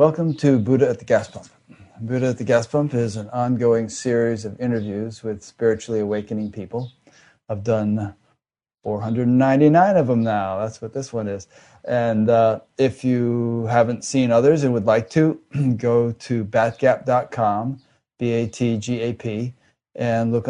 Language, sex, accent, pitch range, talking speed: English, male, American, 105-125 Hz, 145 wpm